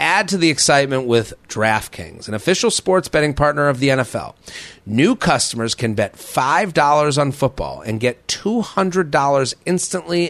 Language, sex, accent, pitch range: English, male, American, 115-150 Hz